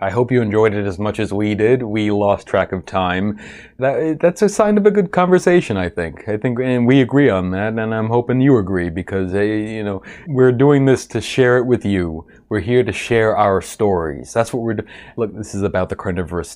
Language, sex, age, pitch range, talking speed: English, male, 30-49, 95-125 Hz, 230 wpm